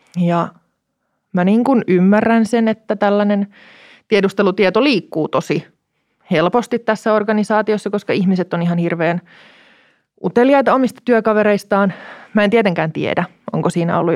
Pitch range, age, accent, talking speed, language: 175-215 Hz, 20-39, native, 120 wpm, Finnish